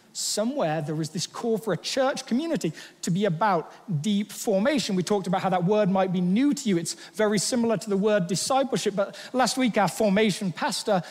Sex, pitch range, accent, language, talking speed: male, 180-230 Hz, British, English, 205 wpm